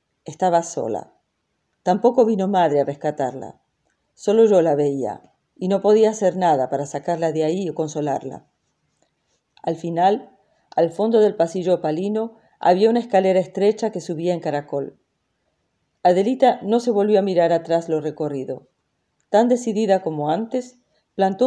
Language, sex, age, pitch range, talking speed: French, female, 40-59, 165-210 Hz, 145 wpm